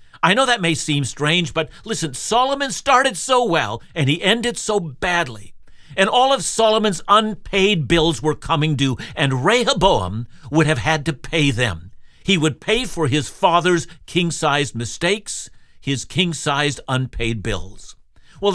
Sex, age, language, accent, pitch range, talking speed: male, 60-79, English, American, 130-180 Hz, 150 wpm